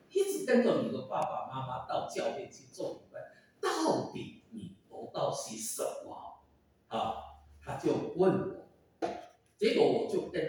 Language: Chinese